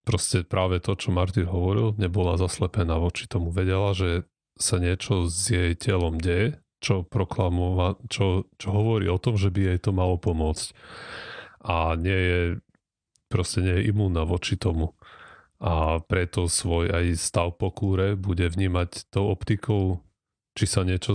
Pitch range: 85-100 Hz